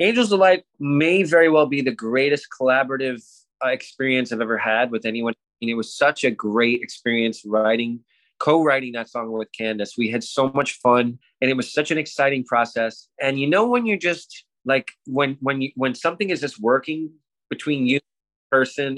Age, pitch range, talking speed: 20-39, 120-145 Hz, 195 wpm